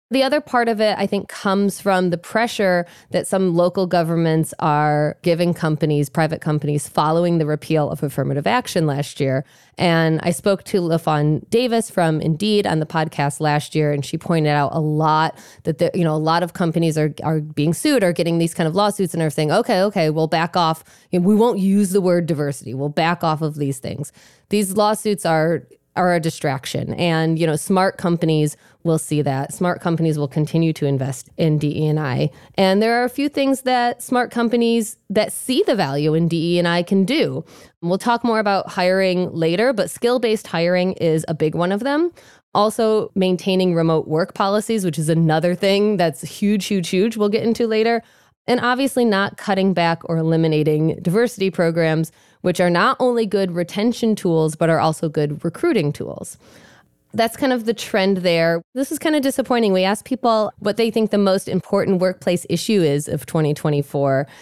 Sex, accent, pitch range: female, American, 155-205 Hz